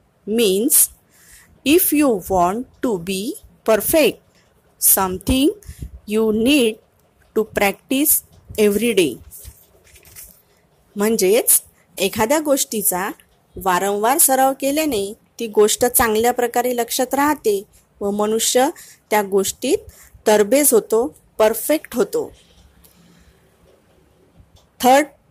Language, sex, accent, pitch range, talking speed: Marathi, female, native, 205-270 Hz, 85 wpm